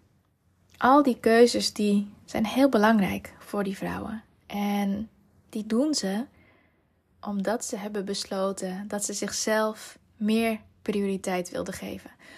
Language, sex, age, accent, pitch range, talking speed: Dutch, female, 20-39, Dutch, 190-225 Hz, 120 wpm